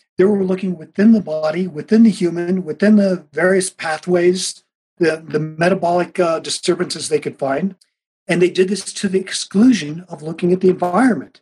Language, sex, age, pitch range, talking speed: English, male, 50-69, 170-210 Hz, 175 wpm